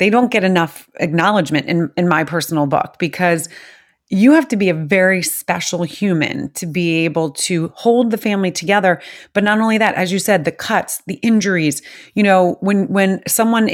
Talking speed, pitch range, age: 190 wpm, 175-210 Hz, 30-49